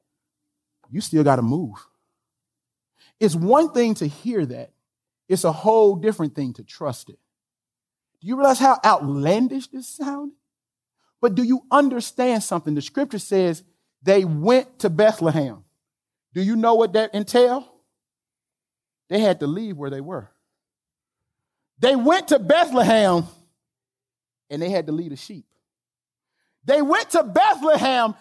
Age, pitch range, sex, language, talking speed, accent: 40-59, 190-285 Hz, male, English, 145 wpm, American